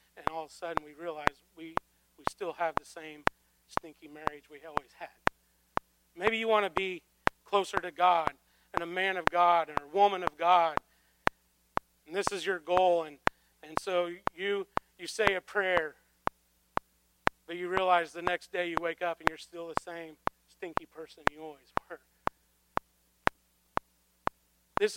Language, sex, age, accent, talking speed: English, male, 40-59, American, 165 wpm